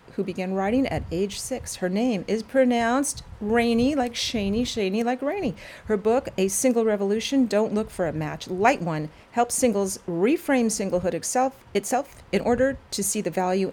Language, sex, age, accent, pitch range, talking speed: English, female, 40-59, American, 185-245 Hz, 175 wpm